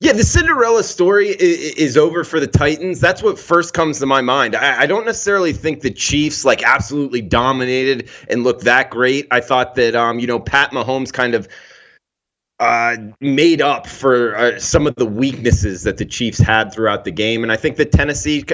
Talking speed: 195 wpm